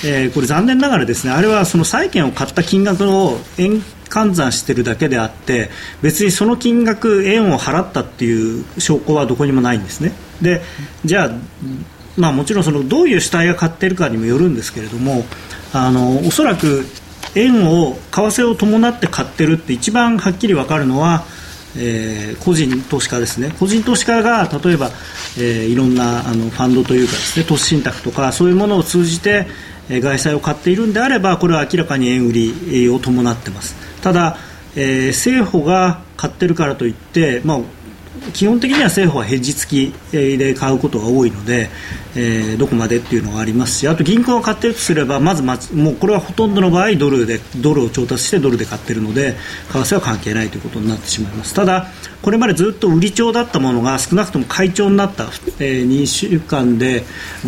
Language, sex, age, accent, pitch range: Japanese, male, 40-59, native, 125-190 Hz